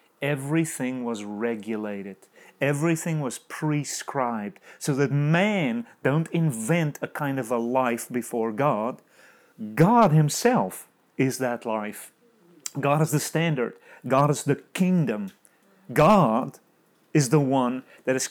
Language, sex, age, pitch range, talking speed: English, male, 30-49, 140-200 Hz, 120 wpm